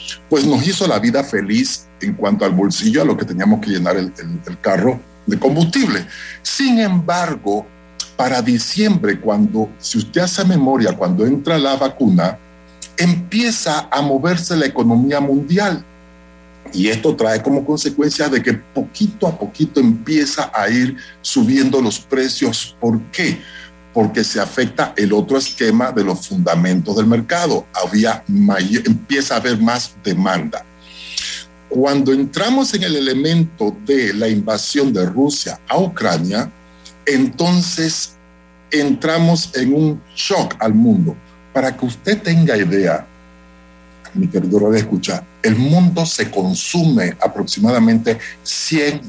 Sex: male